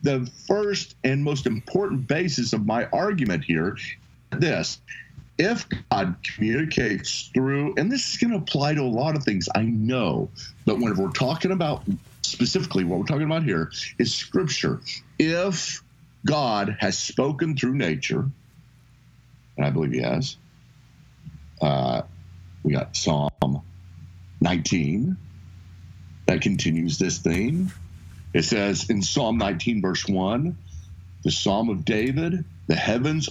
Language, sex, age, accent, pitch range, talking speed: English, male, 50-69, American, 90-145 Hz, 135 wpm